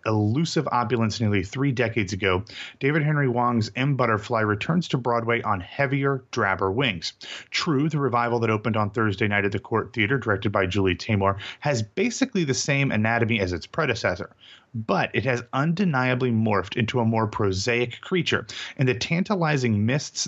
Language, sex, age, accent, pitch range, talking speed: English, male, 30-49, American, 110-135 Hz, 165 wpm